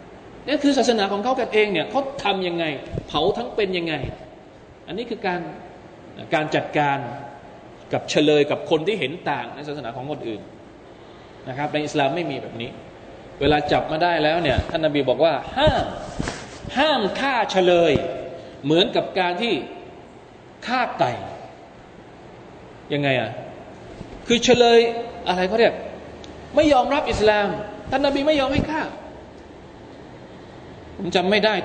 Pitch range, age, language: 170-250 Hz, 20-39, Thai